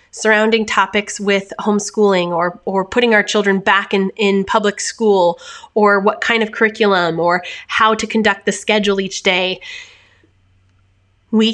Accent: American